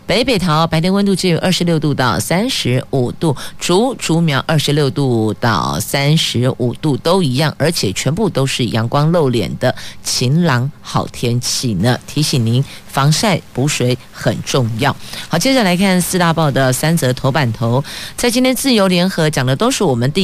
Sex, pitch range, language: female, 130-180 Hz, Chinese